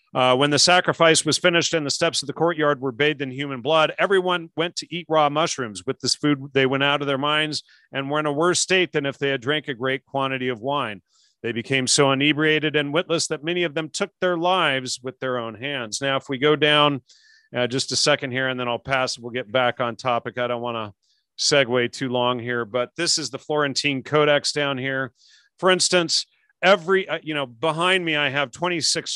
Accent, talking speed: American, 225 wpm